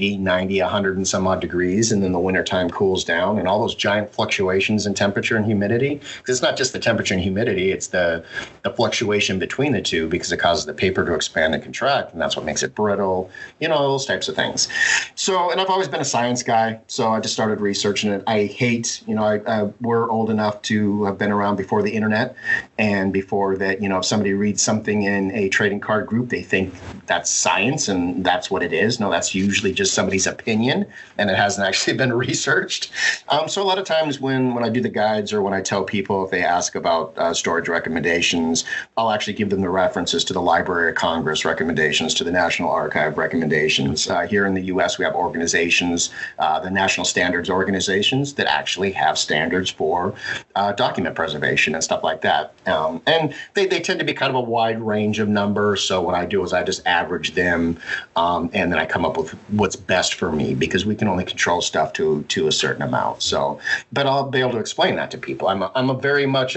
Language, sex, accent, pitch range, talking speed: English, male, American, 100-130 Hz, 225 wpm